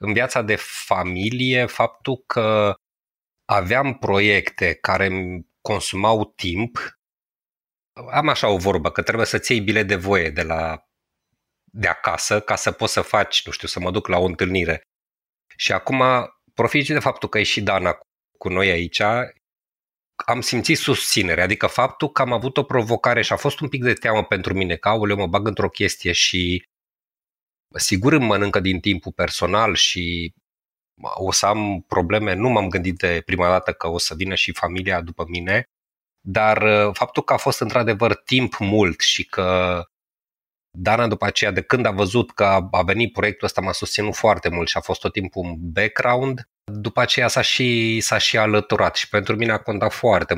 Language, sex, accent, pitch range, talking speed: Romanian, male, native, 95-115 Hz, 175 wpm